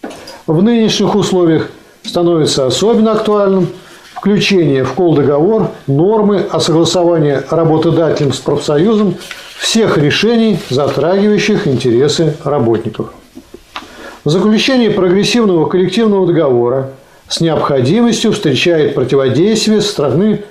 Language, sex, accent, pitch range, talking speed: Russian, male, native, 145-200 Hz, 90 wpm